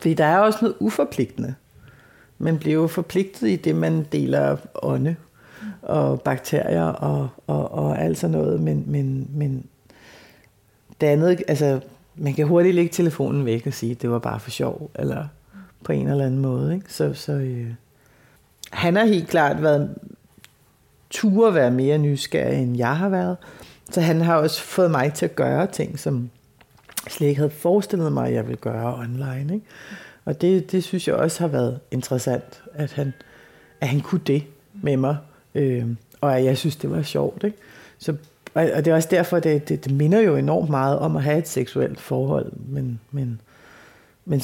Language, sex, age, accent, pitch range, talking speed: English, female, 60-79, Danish, 125-160 Hz, 185 wpm